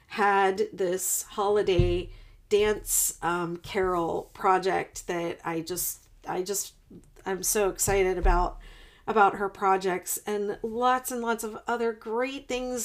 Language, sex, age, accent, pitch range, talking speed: English, female, 40-59, American, 185-215 Hz, 125 wpm